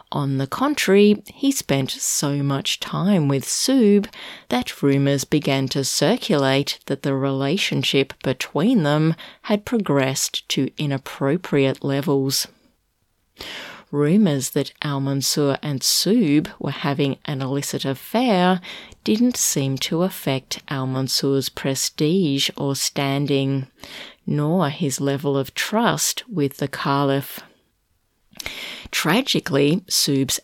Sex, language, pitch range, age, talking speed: female, English, 135-165 Hz, 30-49, 105 wpm